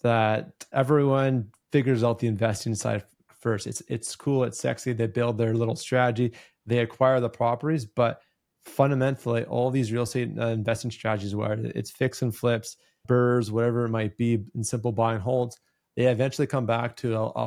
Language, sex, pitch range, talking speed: English, male, 115-125 Hz, 180 wpm